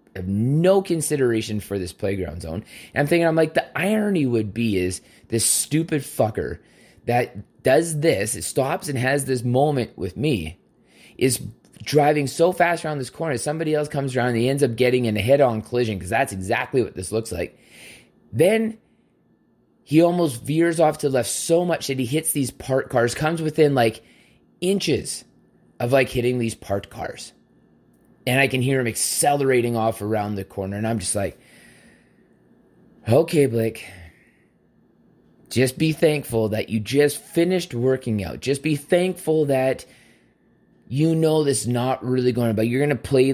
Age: 20-39